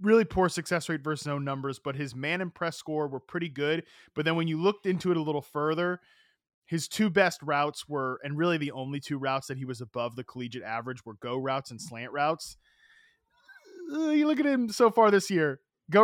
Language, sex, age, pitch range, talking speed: English, male, 20-39, 125-170 Hz, 220 wpm